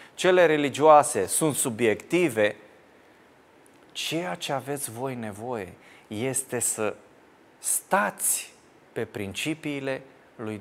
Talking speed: 85 wpm